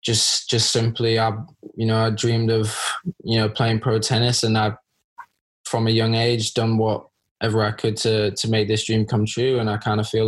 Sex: male